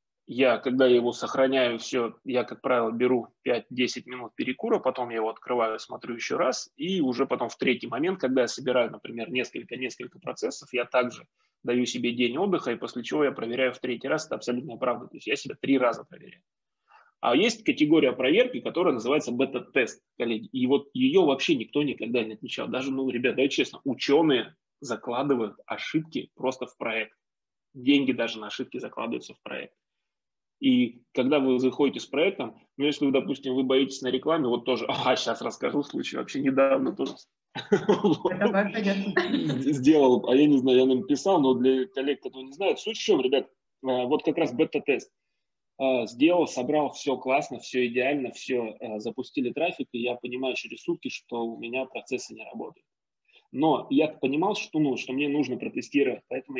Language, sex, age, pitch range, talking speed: Russian, male, 20-39, 125-150 Hz, 170 wpm